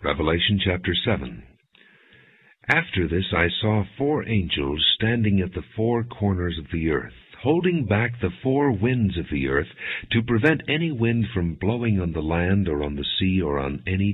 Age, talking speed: 60-79, 175 wpm